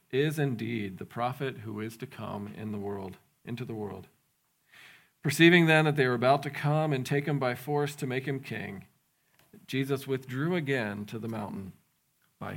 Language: English